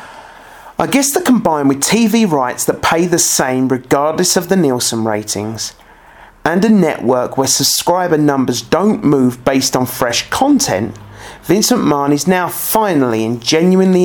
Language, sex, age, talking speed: English, male, 30-49, 150 wpm